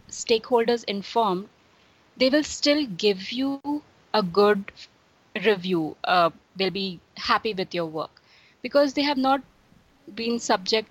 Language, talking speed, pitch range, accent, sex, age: English, 125 wpm, 190-235 Hz, Indian, female, 20-39